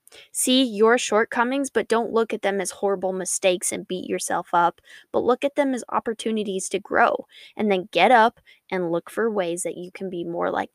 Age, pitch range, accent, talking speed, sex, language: 10-29, 185-220 Hz, American, 205 wpm, female, English